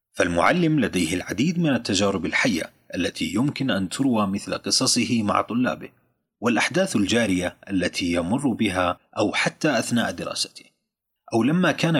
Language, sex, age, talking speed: Arabic, male, 30-49, 130 wpm